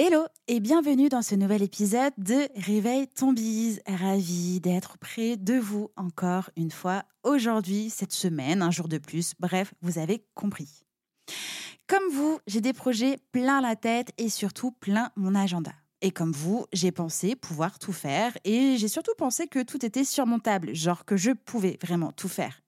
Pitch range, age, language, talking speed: 190-260 Hz, 20-39, French, 175 wpm